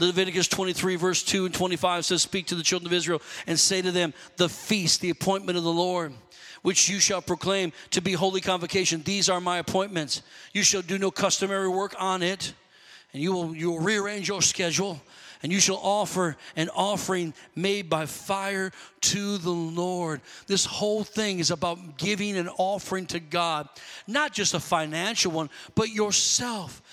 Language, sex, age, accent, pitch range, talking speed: English, male, 40-59, American, 180-215 Hz, 180 wpm